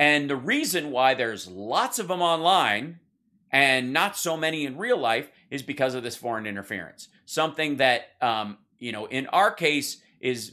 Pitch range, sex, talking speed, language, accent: 115-145 Hz, male, 175 wpm, English, American